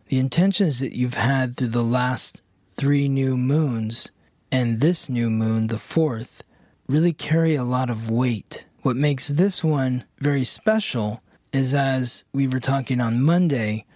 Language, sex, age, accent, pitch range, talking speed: English, male, 30-49, American, 125-160 Hz, 155 wpm